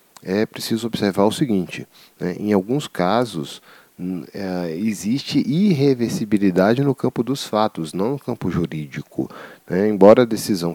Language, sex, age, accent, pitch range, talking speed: English, male, 40-59, Brazilian, 85-110 Hz, 130 wpm